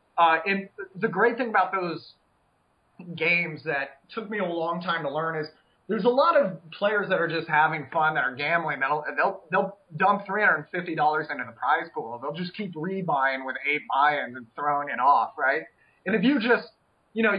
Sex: male